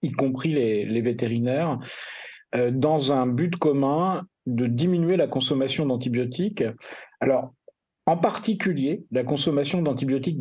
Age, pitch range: 40-59, 135-175 Hz